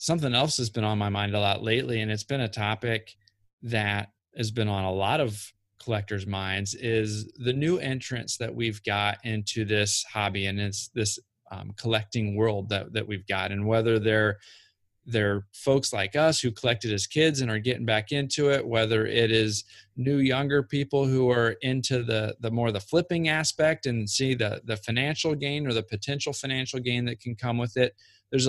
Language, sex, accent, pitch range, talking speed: English, male, American, 105-130 Hz, 195 wpm